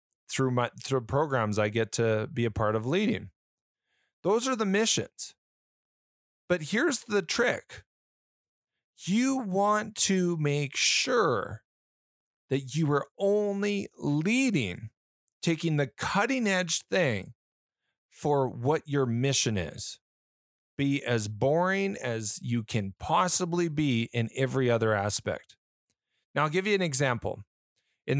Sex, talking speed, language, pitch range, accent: male, 125 wpm, English, 120-160 Hz, American